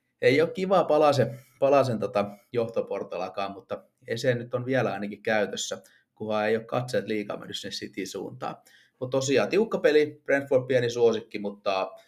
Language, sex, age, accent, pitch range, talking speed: Finnish, male, 30-49, native, 105-130 Hz, 150 wpm